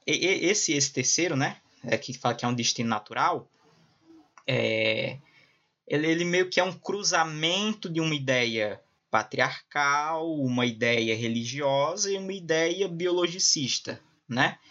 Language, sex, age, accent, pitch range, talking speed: Portuguese, male, 20-39, Brazilian, 120-155 Hz, 120 wpm